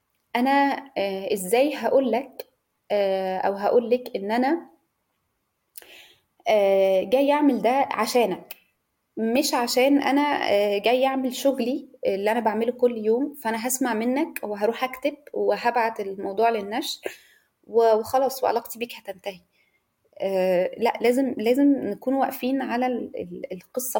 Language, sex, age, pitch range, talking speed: Arabic, female, 20-39, 205-260 Hz, 105 wpm